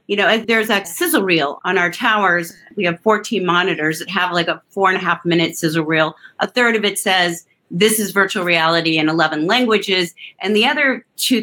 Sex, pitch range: female, 180-225 Hz